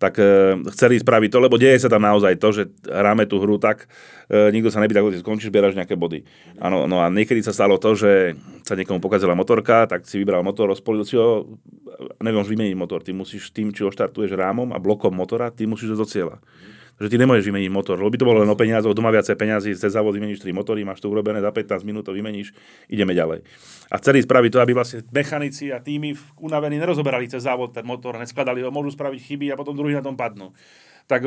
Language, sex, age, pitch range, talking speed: Slovak, male, 30-49, 110-145 Hz, 225 wpm